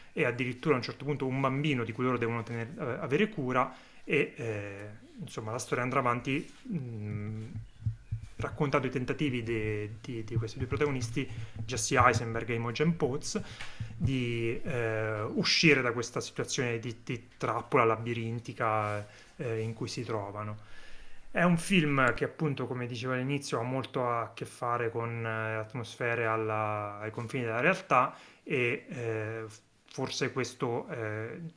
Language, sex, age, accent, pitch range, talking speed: Italian, male, 30-49, native, 115-140 Hz, 145 wpm